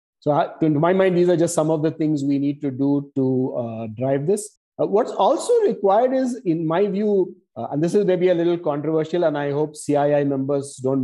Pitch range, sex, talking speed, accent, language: 140-170 Hz, male, 225 wpm, Indian, English